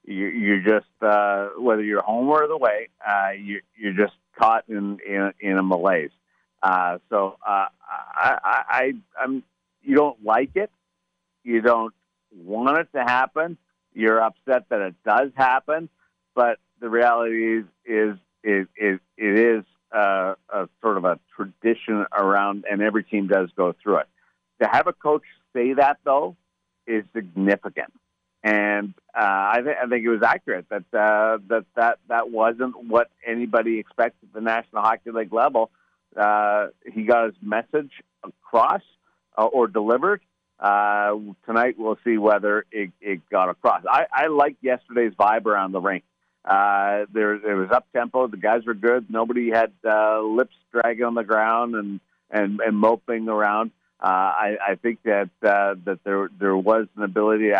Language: English